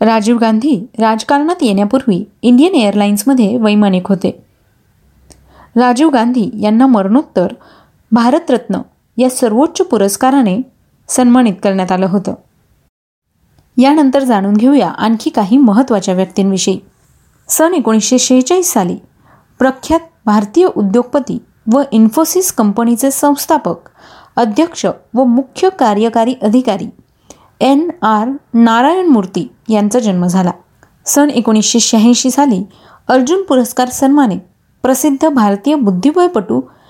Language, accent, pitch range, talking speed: Marathi, native, 210-275 Hz, 95 wpm